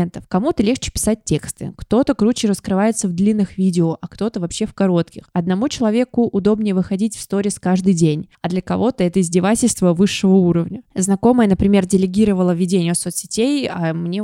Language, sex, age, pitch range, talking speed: Russian, female, 20-39, 180-215 Hz, 155 wpm